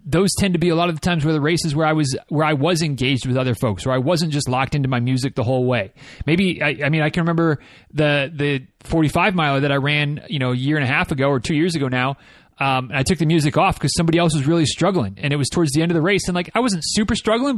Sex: male